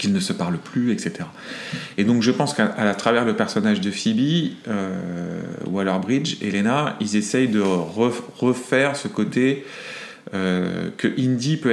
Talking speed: 160 wpm